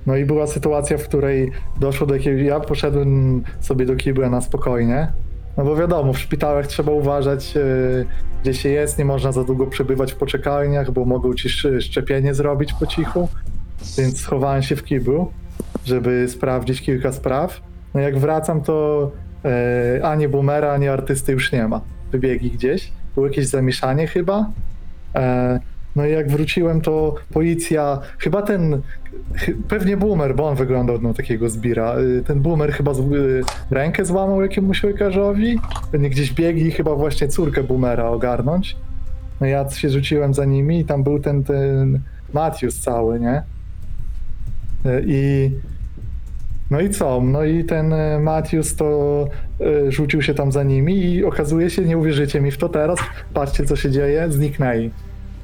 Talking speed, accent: 155 wpm, native